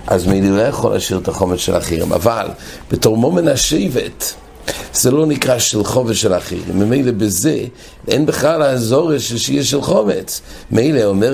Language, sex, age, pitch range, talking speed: English, male, 60-79, 105-150 Hz, 145 wpm